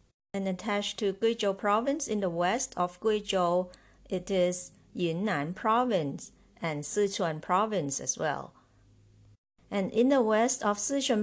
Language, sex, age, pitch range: Chinese, female, 50-69, 170-225 Hz